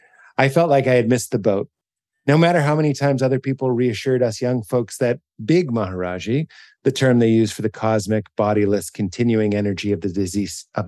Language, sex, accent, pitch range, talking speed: English, male, American, 105-140 Hz, 190 wpm